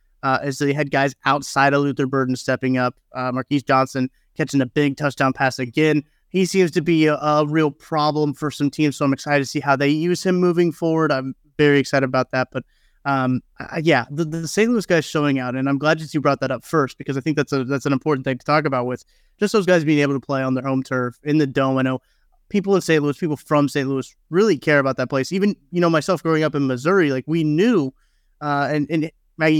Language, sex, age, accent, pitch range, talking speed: English, male, 30-49, American, 135-155 Hz, 255 wpm